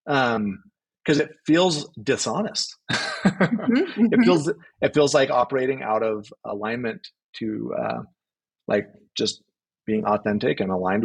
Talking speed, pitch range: 120 wpm, 110-150 Hz